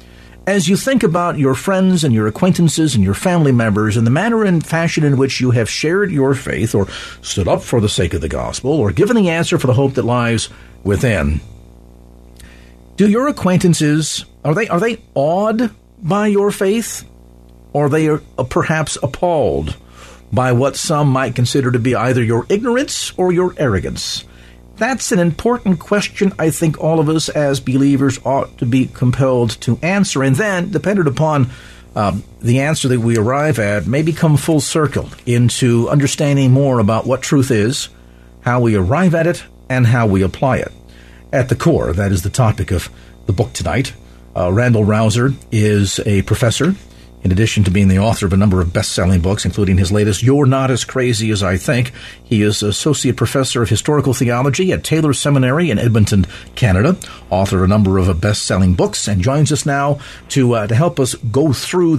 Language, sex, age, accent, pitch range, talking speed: English, male, 50-69, American, 100-150 Hz, 185 wpm